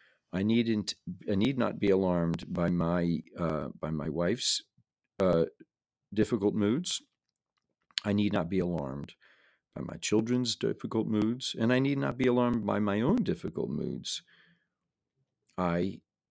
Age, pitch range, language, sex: 50-69, 85-115 Hz, English, male